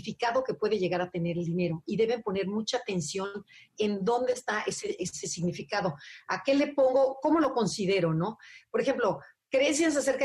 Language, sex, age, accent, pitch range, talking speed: Spanish, female, 40-59, Mexican, 195-260 Hz, 175 wpm